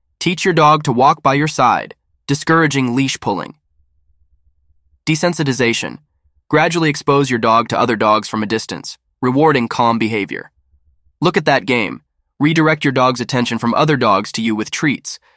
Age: 20-39